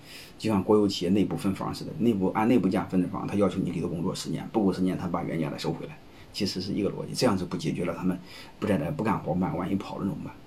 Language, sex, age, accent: Chinese, male, 30-49, native